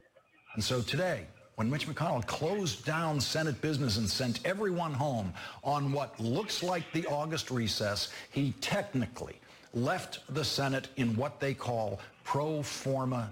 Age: 60-79